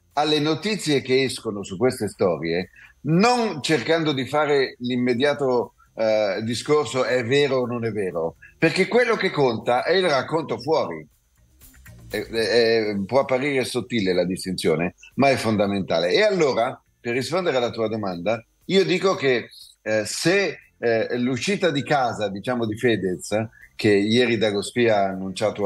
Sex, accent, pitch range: male, native, 110-135 Hz